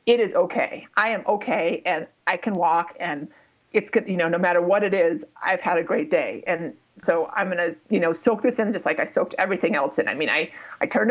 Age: 30-49